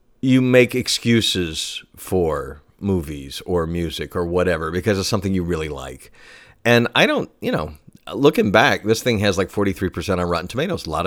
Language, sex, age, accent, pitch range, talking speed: English, male, 40-59, American, 85-110 Hz, 175 wpm